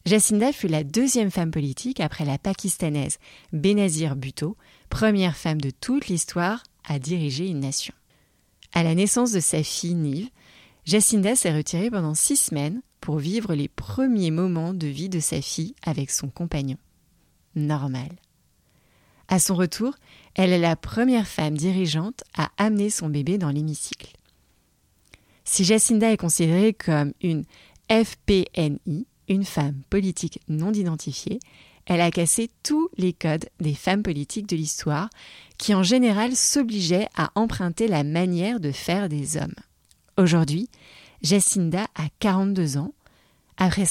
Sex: female